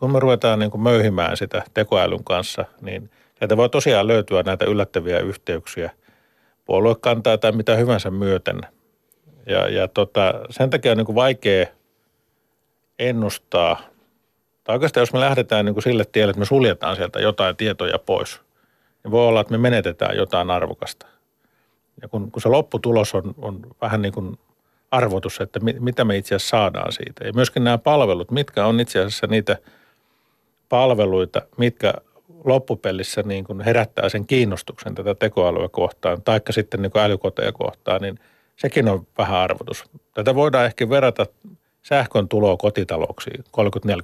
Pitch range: 105-125 Hz